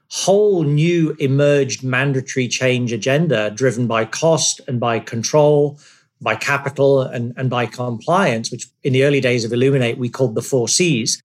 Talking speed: 160 wpm